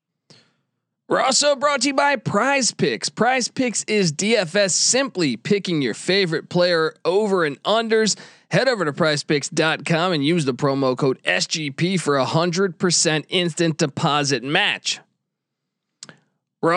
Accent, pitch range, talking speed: American, 165-215 Hz, 135 wpm